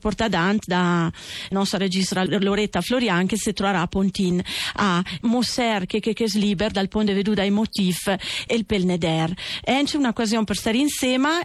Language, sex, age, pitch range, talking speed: Italian, female, 40-59, 190-240 Hz, 155 wpm